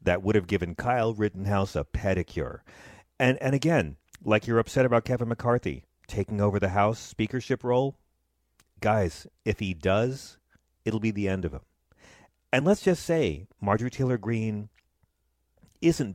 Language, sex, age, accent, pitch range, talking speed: English, male, 40-59, American, 90-130 Hz, 150 wpm